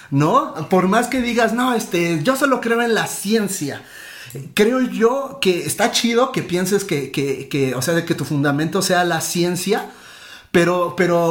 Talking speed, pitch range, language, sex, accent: 180 wpm, 165-220 Hz, Spanish, male, Mexican